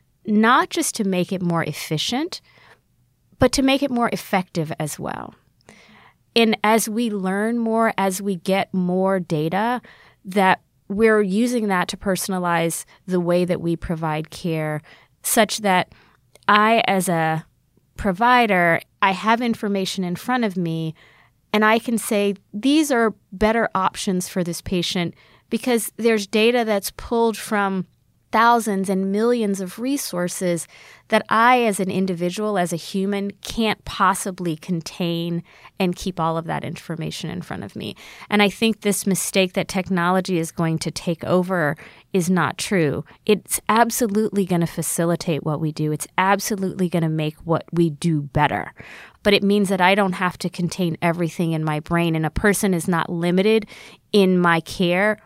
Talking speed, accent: 160 wpm, American